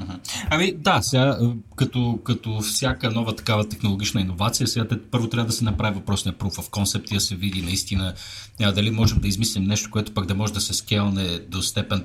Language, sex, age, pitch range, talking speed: Bulgarian, male, 30-49, 100-120 Hz, 205 wpm